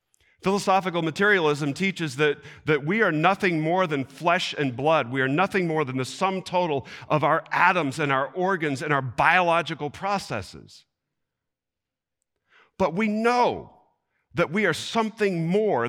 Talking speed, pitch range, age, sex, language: 145 wpm, 145-195 Hz, 50-69, male, English